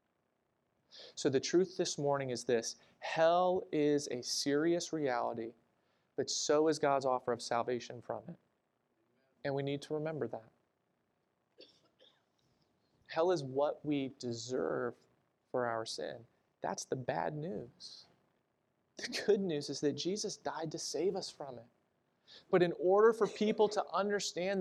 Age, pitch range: 30-49, 140-185 Hz